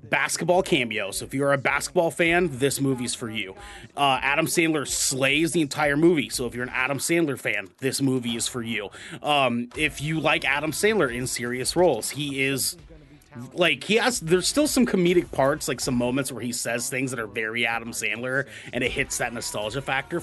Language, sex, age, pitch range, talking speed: English, male, 30-49, 125-165 Hz, 200 wpm